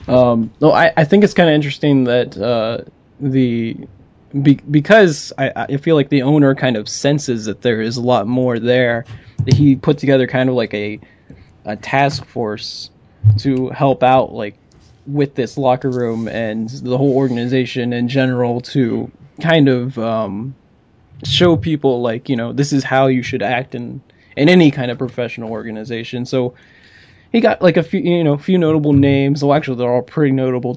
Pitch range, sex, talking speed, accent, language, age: 120-140 Hz, male, 185 wpm, American, English, 20-39